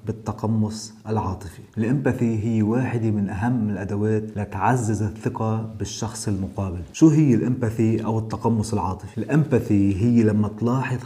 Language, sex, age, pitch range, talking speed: Arabic, male, 30-49, 105-120 Hz, 120 wpm